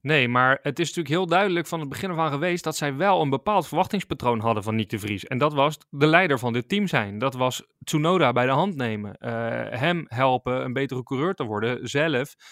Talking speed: 230 wpm